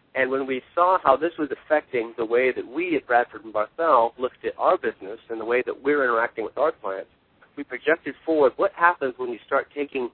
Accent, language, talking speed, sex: American, English, 225 wpm, male